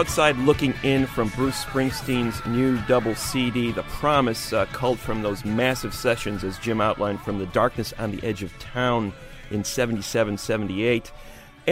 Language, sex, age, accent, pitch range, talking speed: English, male, 40-59, American, 105-135 Hz, 155 wpm